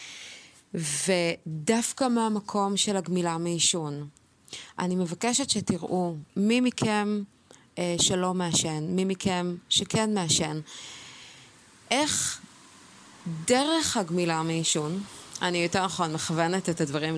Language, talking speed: Hebrew, 95 wpm